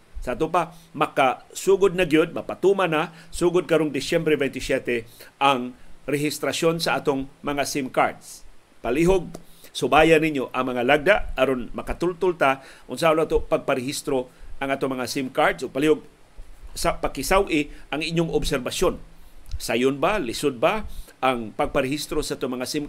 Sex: male